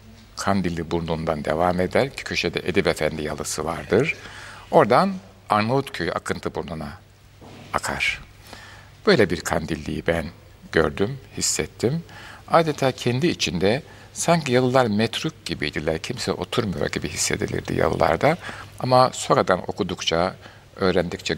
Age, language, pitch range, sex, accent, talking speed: 60-79, Turkish, 90-115 Hz, male, native, 105 wpm